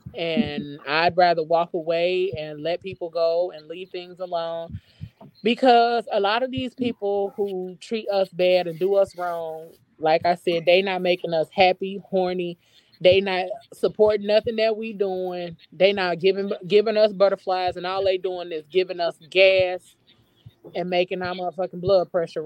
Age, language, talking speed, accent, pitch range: 20-39, English, 170 wpm, American, 175-210 Hz